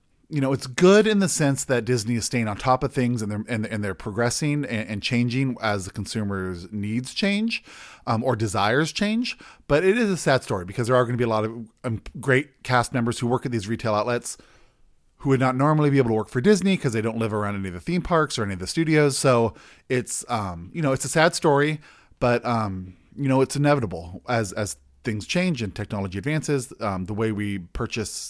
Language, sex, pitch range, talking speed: English, male, 105-135 Hz, 230 wpm